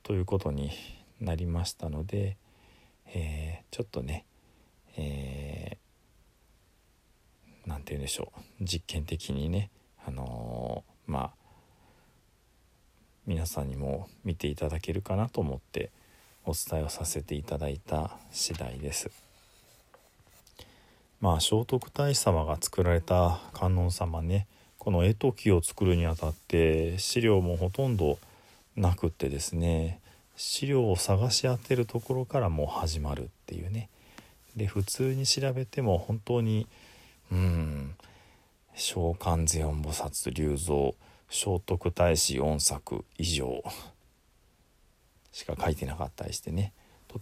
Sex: male